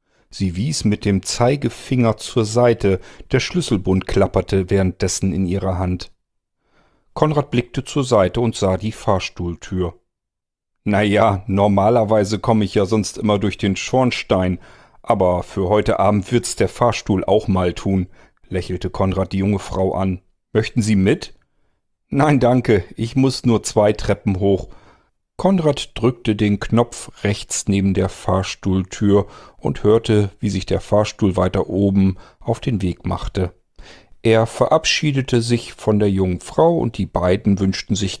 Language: German